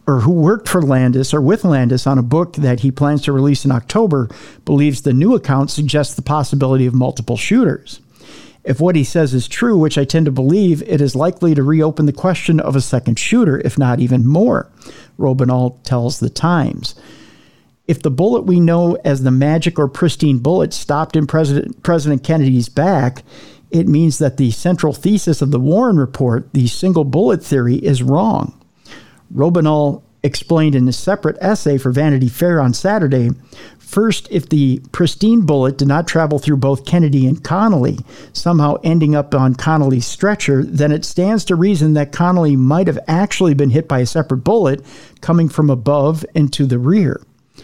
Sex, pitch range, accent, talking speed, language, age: male, 135-165 Hz, American, 180 wpm, English, 50-69